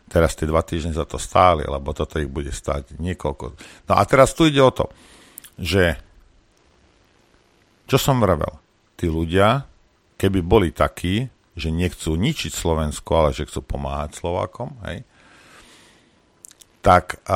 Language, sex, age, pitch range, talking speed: Slovak, male, 50-69, 85-115 Hz, 140 wpm